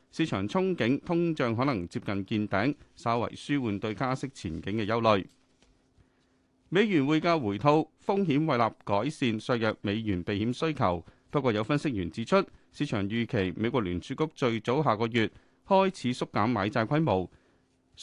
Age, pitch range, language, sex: 30-49, 110-155 Hz, Chinese, male